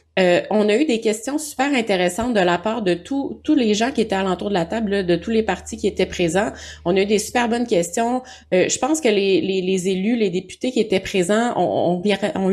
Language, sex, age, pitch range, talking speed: English, female, 30-49, 180-235 Hz, 245 wpm